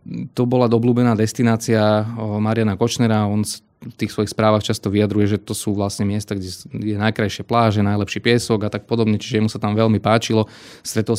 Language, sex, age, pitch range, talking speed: Slovak, male, 20-39, 105-115 Hz, 180 wpm